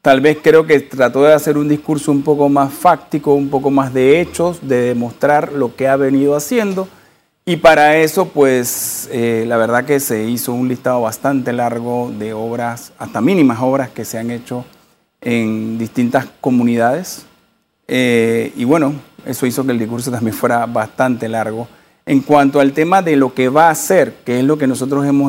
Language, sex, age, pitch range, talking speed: Spanish, male, 40-59, 120-150 Hz, 185 wpm